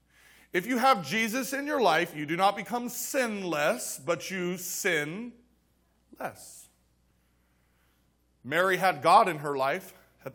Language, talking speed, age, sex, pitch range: English, 135 wpm, 40-59, male, 125-190 Hz